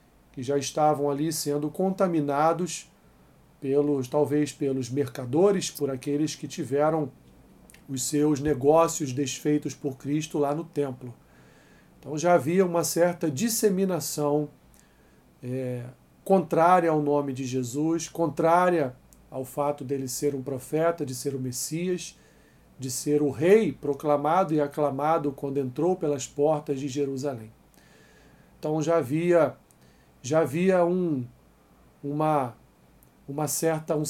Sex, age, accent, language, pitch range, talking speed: male, 40-59, Brazilian, Portuguese, 145-170 Hz, 115 wpm